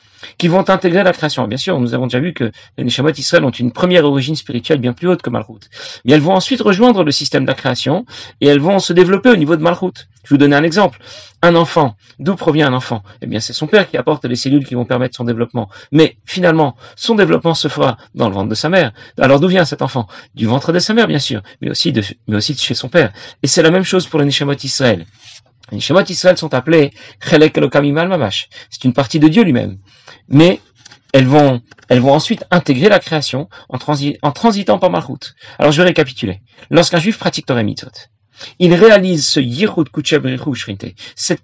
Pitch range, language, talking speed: 125-175 Hz, French, 220 wpm